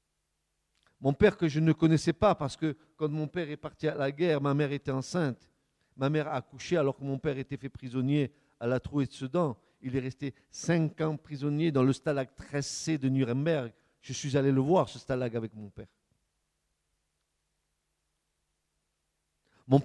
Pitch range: 125-155 Hz